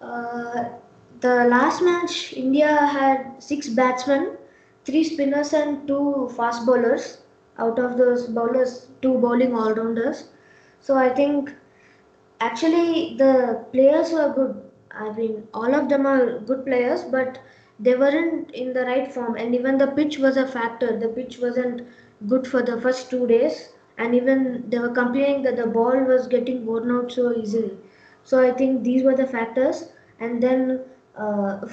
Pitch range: 230-265 Hz